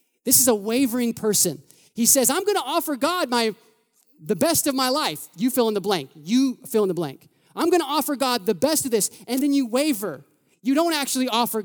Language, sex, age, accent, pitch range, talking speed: English, male, 30-49, American, 180-270 Hz, 230 wpm